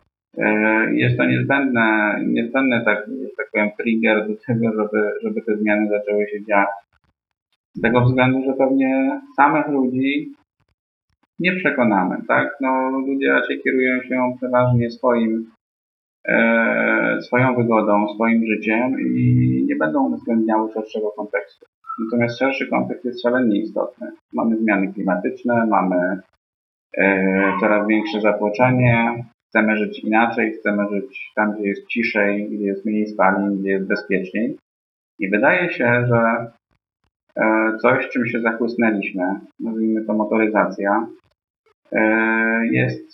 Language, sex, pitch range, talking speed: Polish, male, 105-125 Hz, 120 wpm